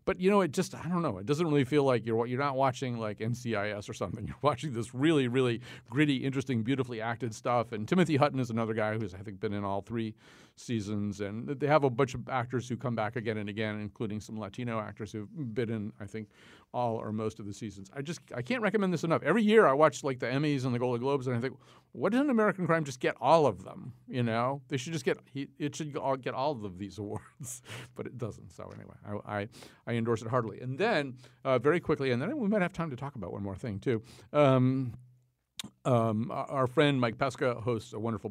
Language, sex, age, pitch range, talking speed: English, male, 40-59, 110-140 Hz, 245 wpm